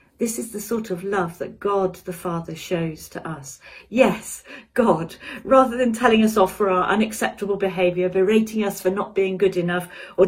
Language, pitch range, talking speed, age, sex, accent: English, 170-200 Hz, 185 wpm, 40-59, female, British